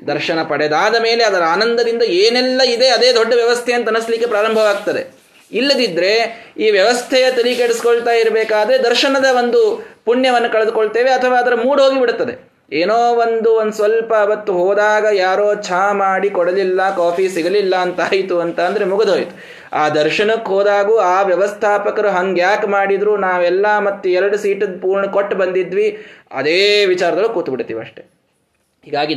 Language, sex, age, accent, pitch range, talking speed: Kannada, male, 20-39, native, 185-245 Hz, 120 wpm